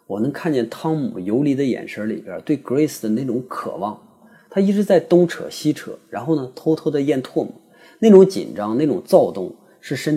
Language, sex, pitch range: Chinese, male, 115-165 Hz